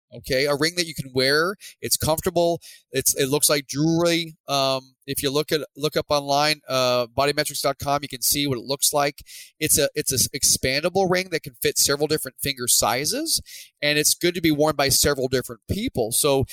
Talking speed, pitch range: 200 wpm, 130-165 Hz